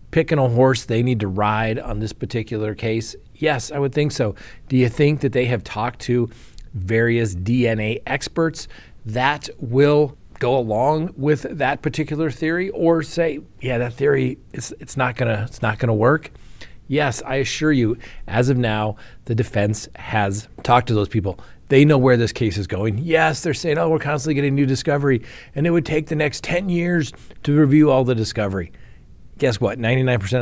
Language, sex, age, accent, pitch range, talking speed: English, male, 40-59, American, 105-140 Hz, 185 wpm